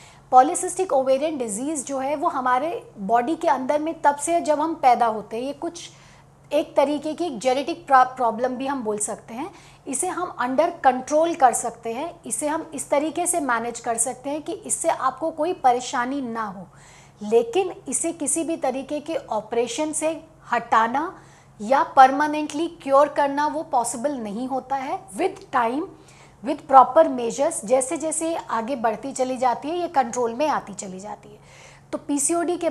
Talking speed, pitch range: 170 wpm, 240-315 Hz